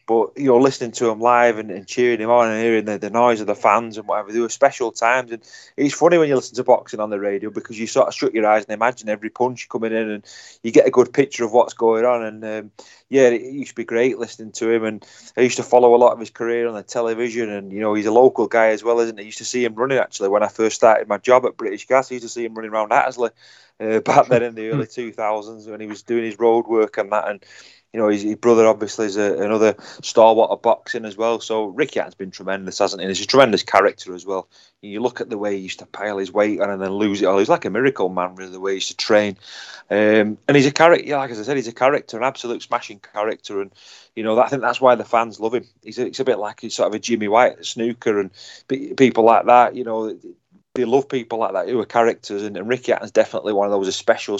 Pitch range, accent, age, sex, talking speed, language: 105-120 Hz, British, 20-39, male, 280 wpm, English